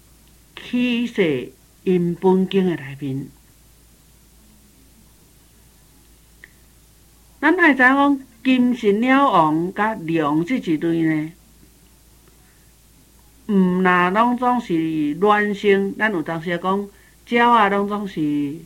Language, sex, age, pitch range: Chinese, male, 60-79, 165-215 Hz